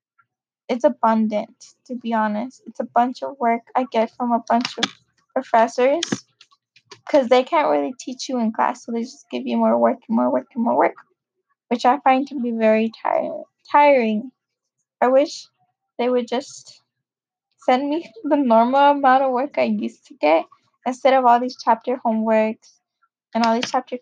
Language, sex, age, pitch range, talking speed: English, female, 10-29, 230-280 Hz, 175 wpm